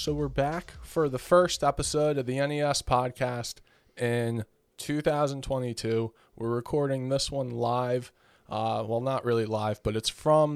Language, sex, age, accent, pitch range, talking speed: English, male, 20-39, American, 115-140 Hz, 150 wpm